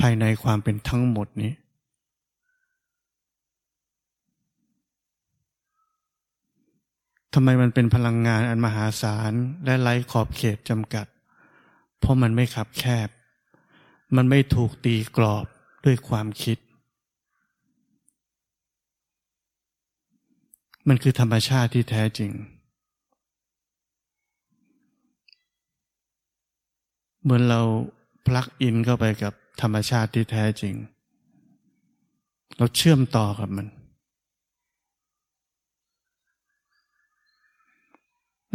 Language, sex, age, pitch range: Thai, male, 20-39, 110-160 Hz